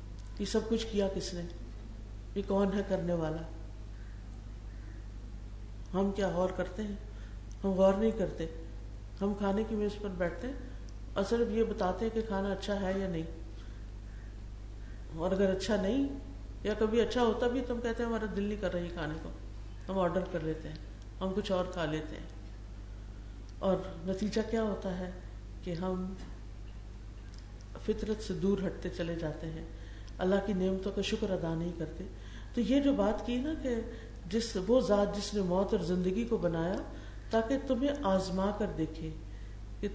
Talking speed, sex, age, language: 170 wpm, female, 50-69, Urdu